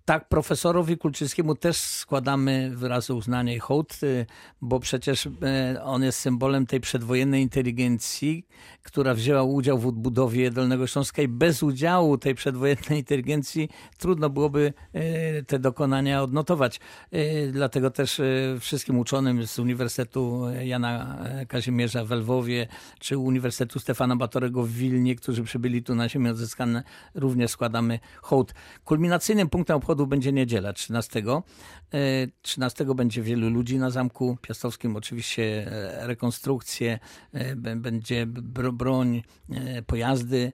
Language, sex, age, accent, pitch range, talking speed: Polish, male, 50-69, native, 120-135 Hz, 115 wpm